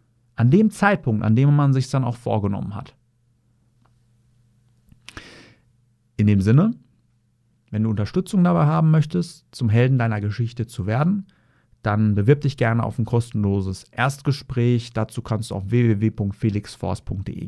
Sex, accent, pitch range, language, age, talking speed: male, German, 110-140 Hz, German, 40-59, 135 wpm